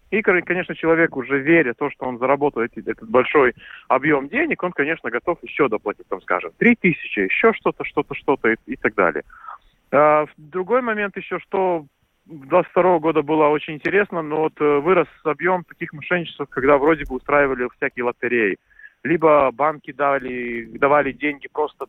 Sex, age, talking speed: male, 30-49, 165 wpm